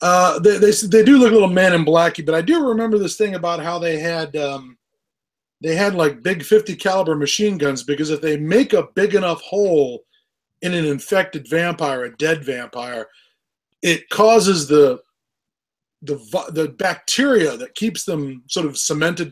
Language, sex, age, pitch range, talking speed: English, male, 20-39, 150-195 Hz, 175 wpm